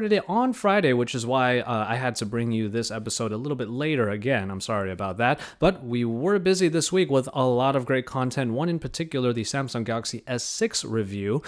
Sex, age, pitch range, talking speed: male, 30-49, 110-150 Hz, 225 wpm